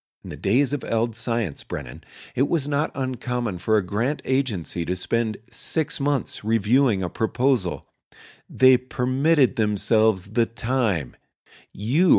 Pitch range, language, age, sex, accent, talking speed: 95-130 Hz, English, 40-59, male, American, 140 wpm